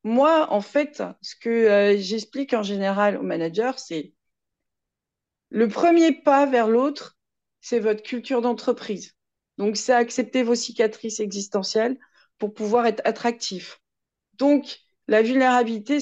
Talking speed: 125 wpm